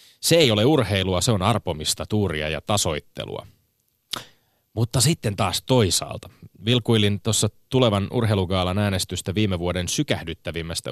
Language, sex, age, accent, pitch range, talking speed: Finnish, male, 30-49, native, 90-120 Hz, 120 wpm